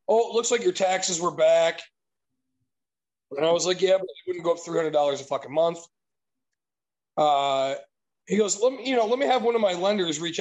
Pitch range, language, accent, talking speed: 155-190 Hz, English, American, 225 wpm